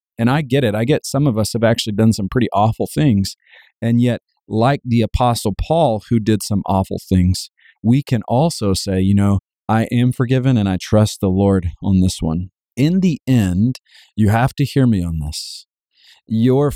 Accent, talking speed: American, 195 wpm